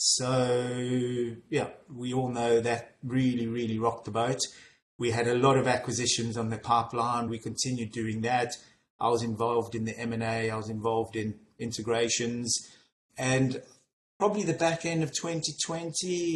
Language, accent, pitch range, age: English, British, 115-130 Hz, 30-49